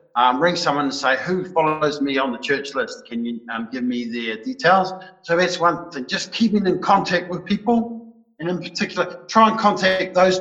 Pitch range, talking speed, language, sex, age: 150-190 Hz, 210 wpm, English, male, 50-69